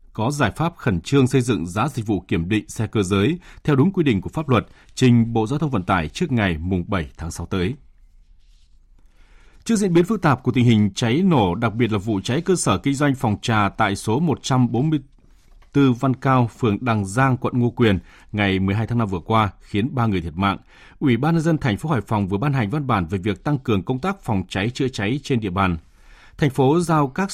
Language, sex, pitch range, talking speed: Vietnamese, male, 100-150 Hz, 235 wpm